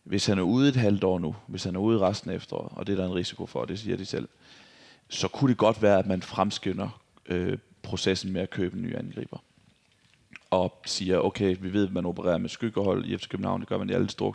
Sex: male